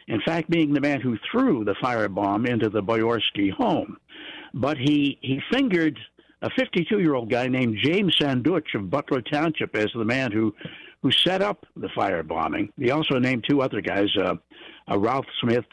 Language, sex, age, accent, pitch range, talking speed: English, male, 60-79, American, 105-145 Hz, 170 wpm